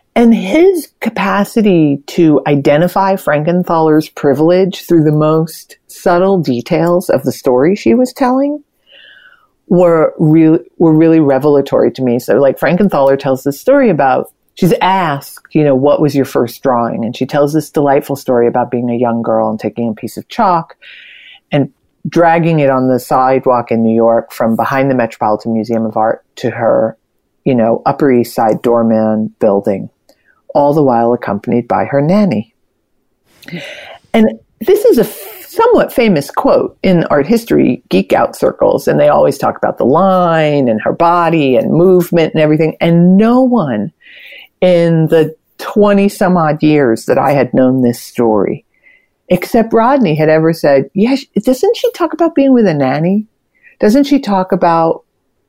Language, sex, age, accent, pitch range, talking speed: English, female, 40-59, American, 135-200 Hz, 160 wpm